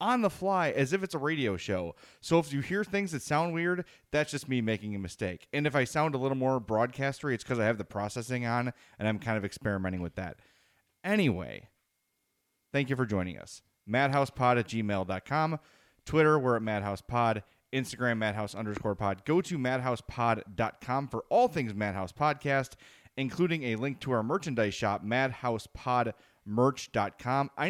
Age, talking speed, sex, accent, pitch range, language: 30-49, 175 wpm, male, American, 105-140 Hz, English